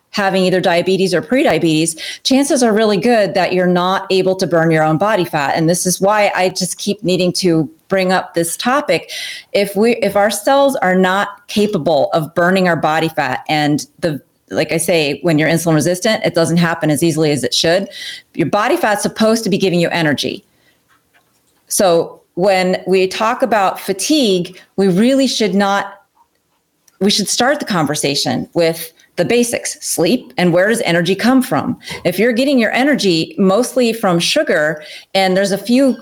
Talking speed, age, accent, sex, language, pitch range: 180 wpm, 30-49, American, female, English, 175-215 Hz